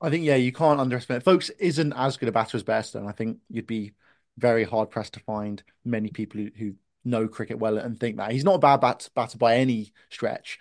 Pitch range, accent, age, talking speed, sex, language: 115-135 Hz, British, 20-39, 240 wpm, male, English